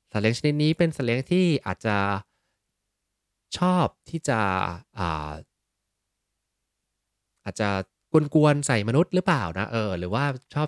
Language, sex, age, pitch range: Thai, male, 20-39, 95-130 Hz